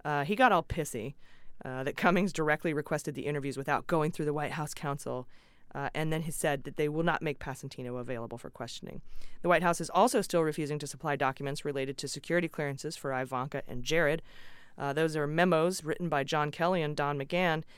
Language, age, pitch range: English, 30-49, 140-170 Hz